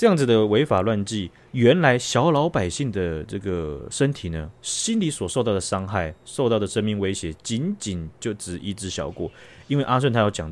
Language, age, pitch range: Chinese, 30-49, 90-125 Hz